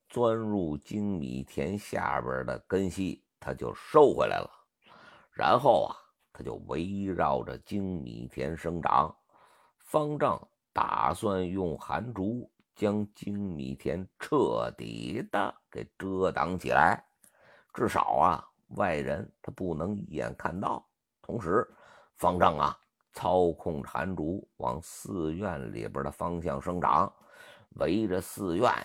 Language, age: Chinese, 50-69